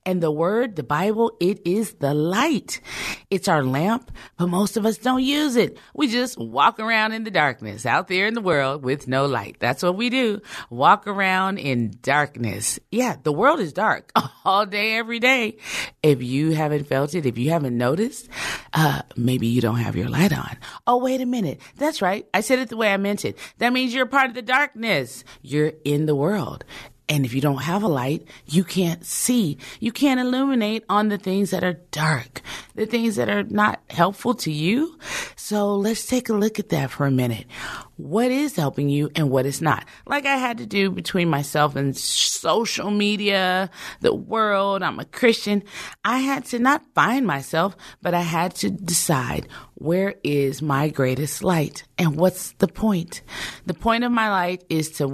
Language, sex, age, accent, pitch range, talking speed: English, female, 40-59, American, 145-225 Hz, 195 wpm